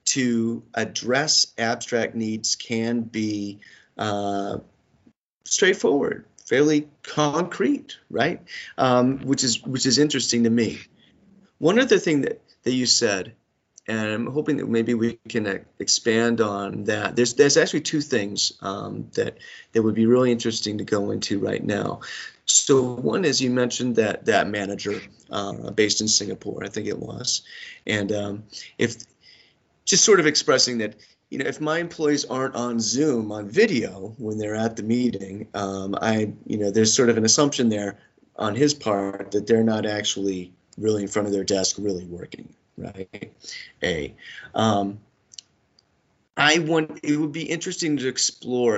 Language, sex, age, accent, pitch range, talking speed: English, male, 30-49, American, 105-125 Hz, 160 wpm